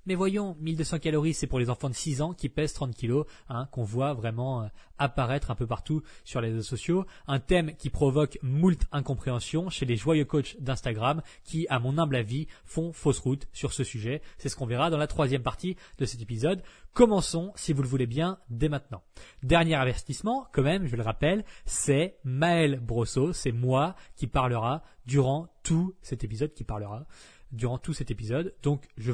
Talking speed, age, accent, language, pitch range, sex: 195 wpm, 20-39, French, French, 125-160 Hz, male